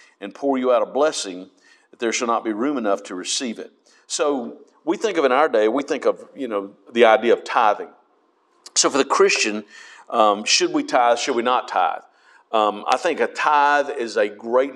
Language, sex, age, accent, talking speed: English, male, 50-69, American, 210 wpm